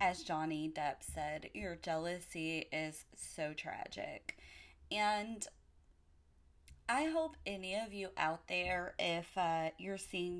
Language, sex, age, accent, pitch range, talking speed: English, female, 20-39, American, 150-190 Hz, 120 wpm